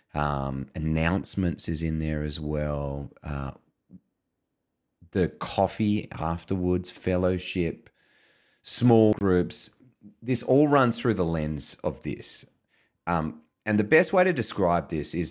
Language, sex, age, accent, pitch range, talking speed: English, male, 30-49, Australian, 80-105 Hz, 120 wpm